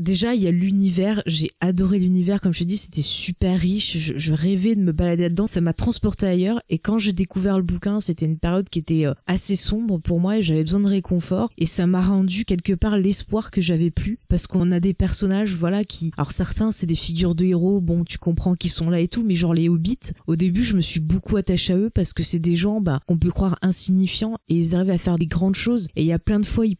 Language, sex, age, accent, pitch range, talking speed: French, female, 20-39, French, 170-195 Hz, 260 wpm